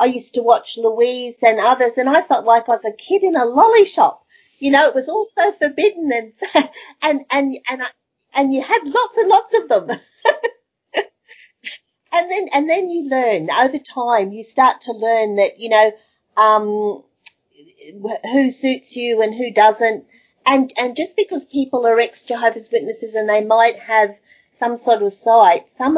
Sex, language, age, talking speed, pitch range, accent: female, English, 40-59, 180 wpm, 215-280 Hz, Australian